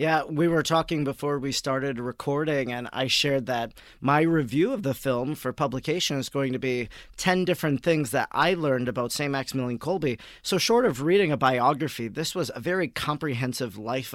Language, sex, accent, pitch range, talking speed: English, male, American, 130-155 Hz, 190 wpm